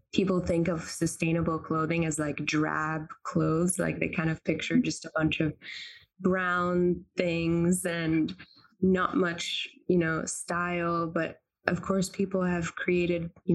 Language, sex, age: English, female, 20-39